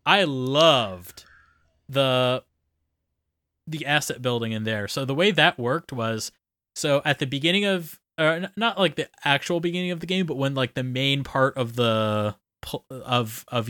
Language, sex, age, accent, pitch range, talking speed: English, male, 20-39, American, 125-175 Hz, 165 wpm